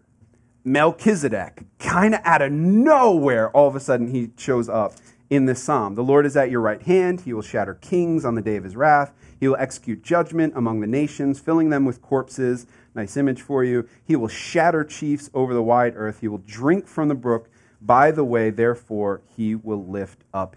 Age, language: 30-49, English